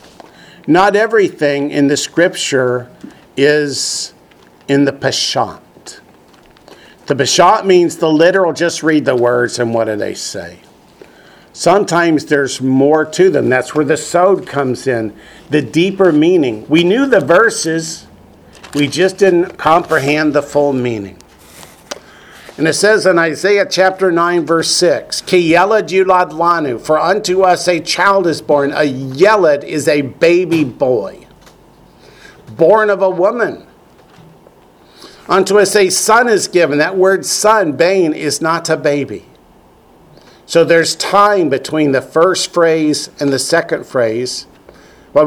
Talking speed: 135 wpm